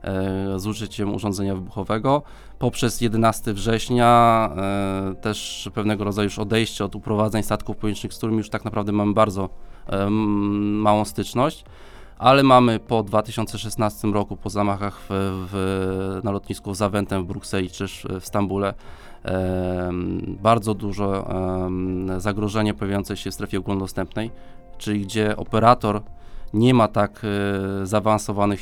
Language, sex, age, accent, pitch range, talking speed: Polish, male, 20-39, native, 95-110 Hz, 130 wpm